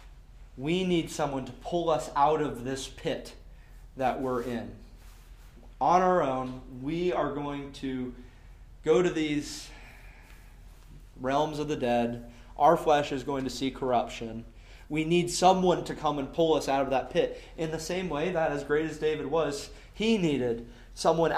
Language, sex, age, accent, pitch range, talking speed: English, male, 30-49, American, 125-160 Hz, 165 wpm